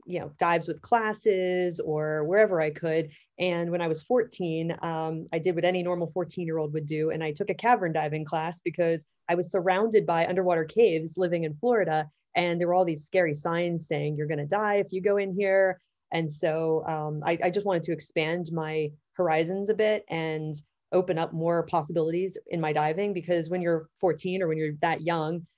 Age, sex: 20-39, female